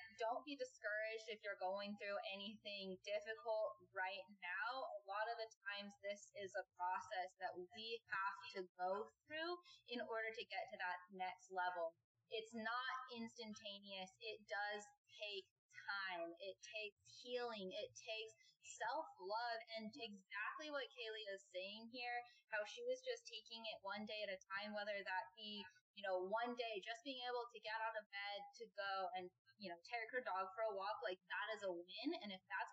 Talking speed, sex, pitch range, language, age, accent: 180 wpm, female, 190-235 Hz, English, 20-39, American